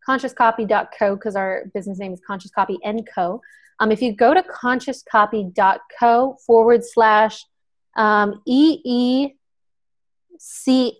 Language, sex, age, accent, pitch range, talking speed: English, female, 20-39, American, 200-235 Hz, 120 wpm